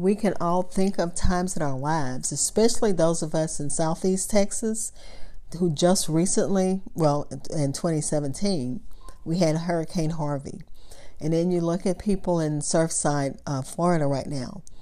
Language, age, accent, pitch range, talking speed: English, 40-59, American, 150-180 Hz, 155 wpm